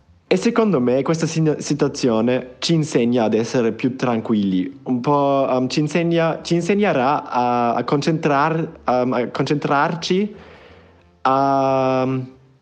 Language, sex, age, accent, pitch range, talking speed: Italian, male, 20-39, native, 110-140 Hz, 120 wpm